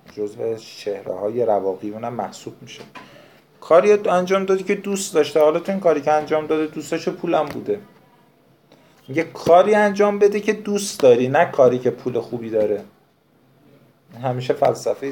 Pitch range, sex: 115-150 Hz, male